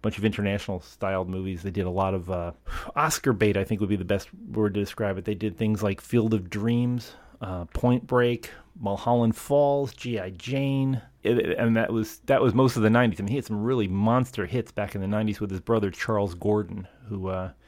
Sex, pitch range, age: male, 95-115 Hz, 30-49